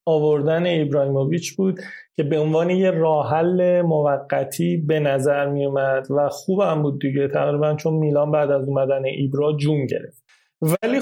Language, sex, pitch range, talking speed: Persian, male, 150-205 Hz, 145 wpm